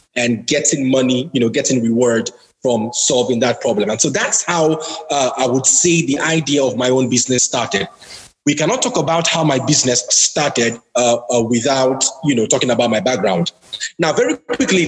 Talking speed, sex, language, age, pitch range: 185 wpm, male, English, 30-49, 135-175 Hz